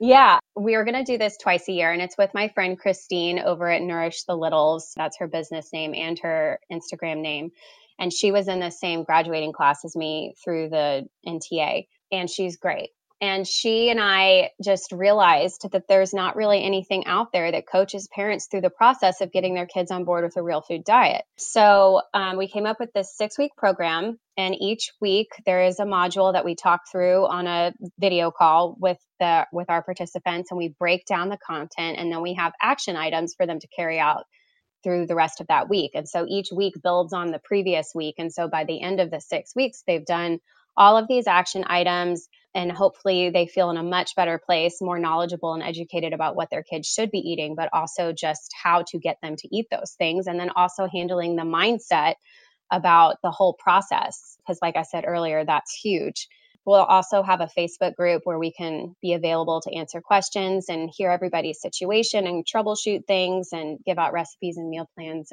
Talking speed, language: 210 wpm, English